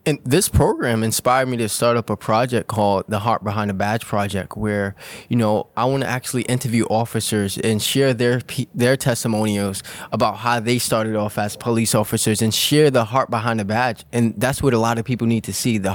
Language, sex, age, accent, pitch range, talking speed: English, male, 20-39, American, 110-135 Hz, 210 wpm